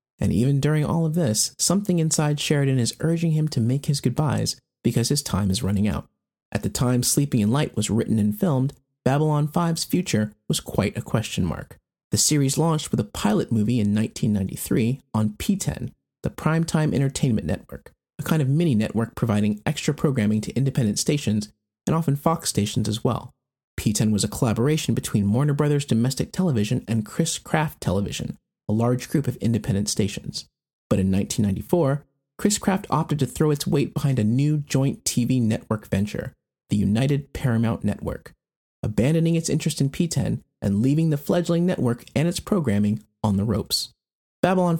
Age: 30-49